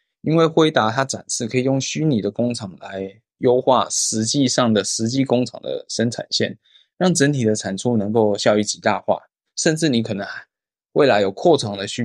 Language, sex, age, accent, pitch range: Chinese, male, 20-39, native, 105-130 Hz